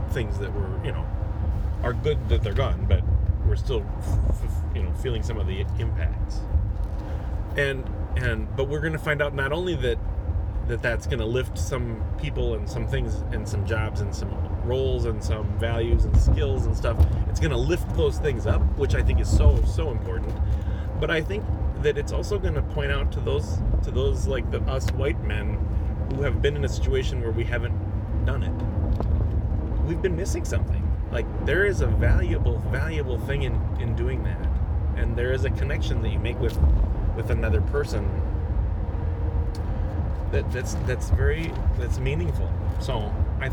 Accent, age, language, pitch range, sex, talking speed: American, 30-49, English, 80-100 Hz, male, 185 wpm